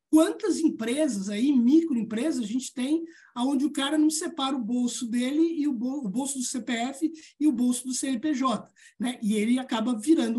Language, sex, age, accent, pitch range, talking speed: Portuguese, male, 20-39, Brazilian, 235-300 Hz, 175 wpm